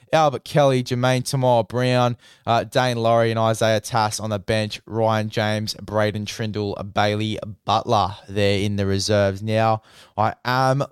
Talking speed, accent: 145 wpm, Australian